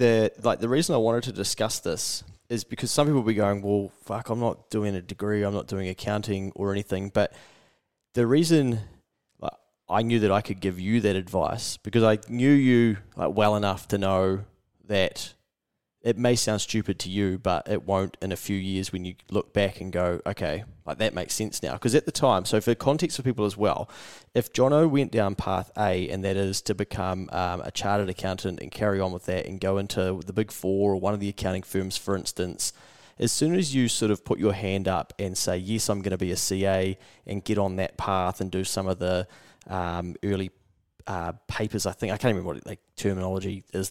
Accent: Australian